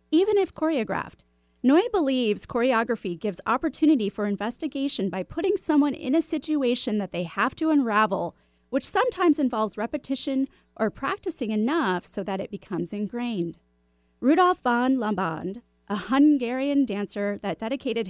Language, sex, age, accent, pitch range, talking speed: English, female, 30-49, American, 195-280 Hz, 135 wpm